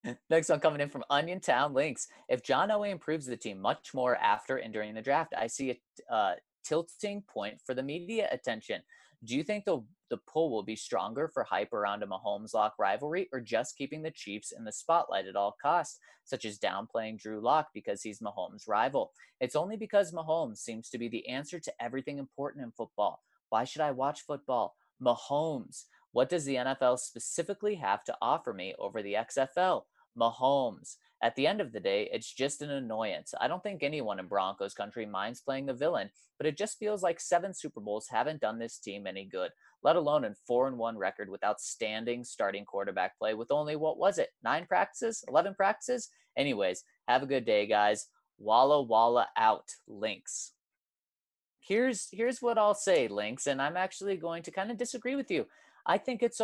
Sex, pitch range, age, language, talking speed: male, 120-200 Hz, 20-39, English, 195 wpm